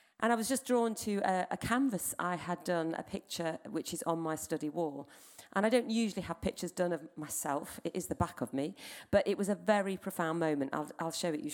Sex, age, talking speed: female, 40-59, 245 wpm